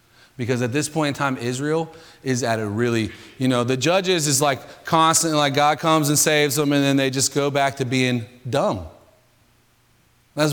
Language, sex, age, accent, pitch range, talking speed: English, male, 30-49, American, 150-235 Hz, 195 wpm